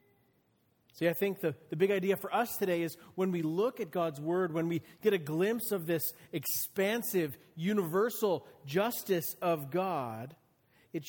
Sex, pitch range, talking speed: male, 140-190 Hz, 160 wpm